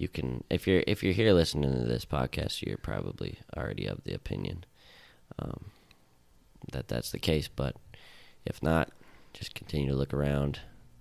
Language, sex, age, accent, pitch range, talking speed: English, male, 20-39, American, 75-85 Hz, 165 wpm